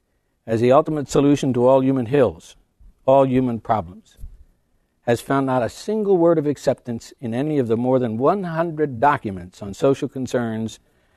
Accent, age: American, 60-79